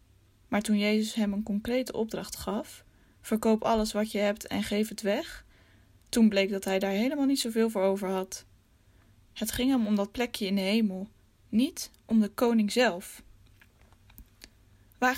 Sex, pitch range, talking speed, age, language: female, 160-225 Hz, 170 wpm, 10-29, English